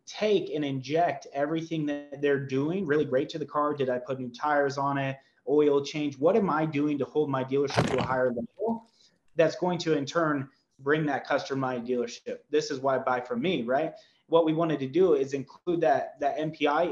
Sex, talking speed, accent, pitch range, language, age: male, 215 wpm, American, 135-155 Hz, English, 30-49